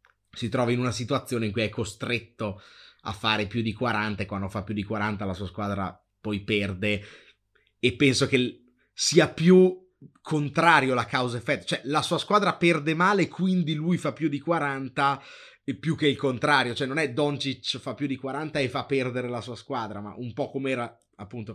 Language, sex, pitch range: Italian, male, 110-140 Hz